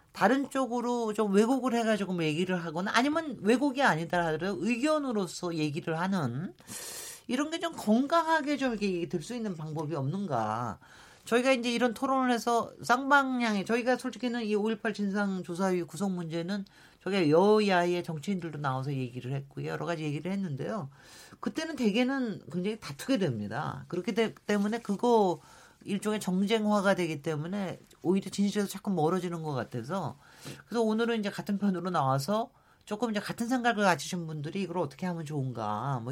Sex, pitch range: male, 160-230 Hz